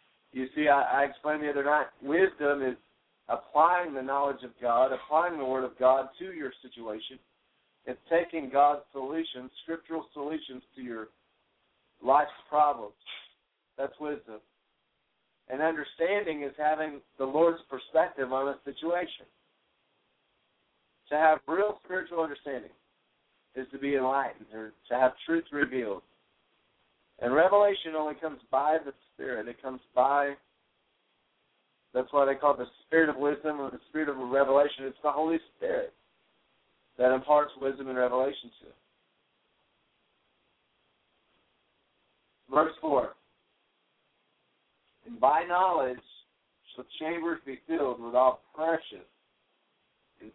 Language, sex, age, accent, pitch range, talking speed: English, male, 50-69, American, 130-160 Hz, 130 wpm